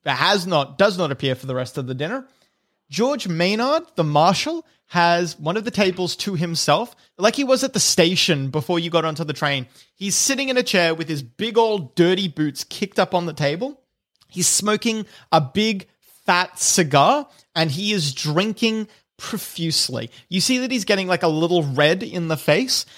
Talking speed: 195 wpm